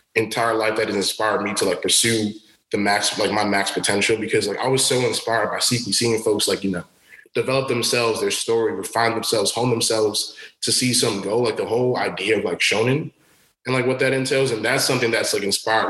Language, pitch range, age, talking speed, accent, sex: English, 105-125 Hz, 20-39, 220 wpm, American, male